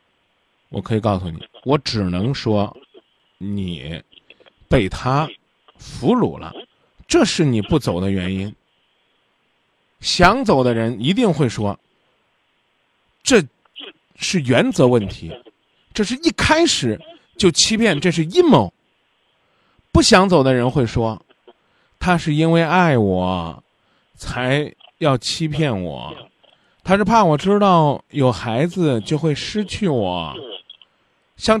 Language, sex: Chinese, male